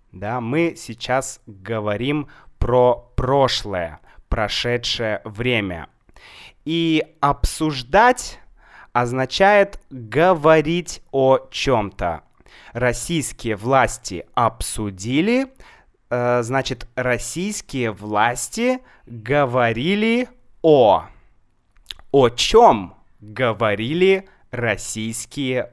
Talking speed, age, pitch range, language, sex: 65 wpm, 20-39, 115-155 Hz, Russian, male